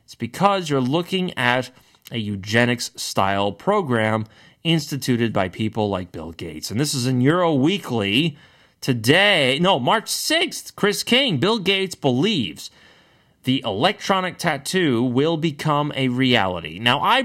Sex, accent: male, American